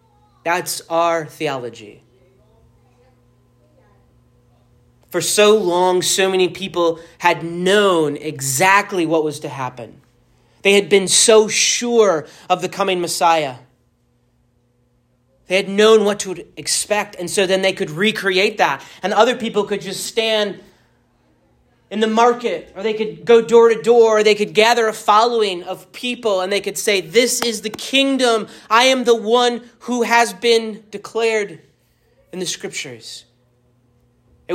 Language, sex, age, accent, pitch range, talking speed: English, male, 30-49, American, 150-215 Hz, 140 wpm